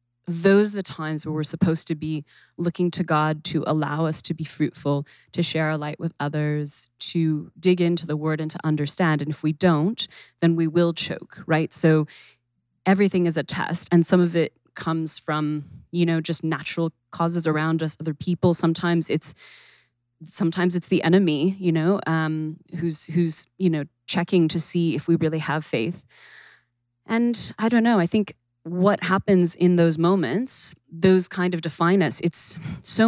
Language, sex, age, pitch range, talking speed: English, female, 20-39, 155-180 Hz, 180 wpm